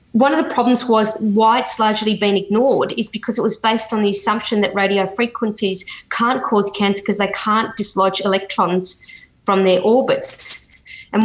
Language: English